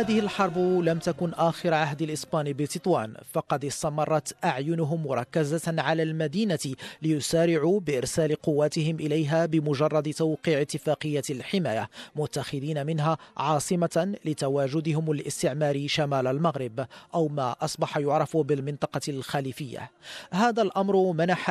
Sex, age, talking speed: male, 40-59, 105 wpm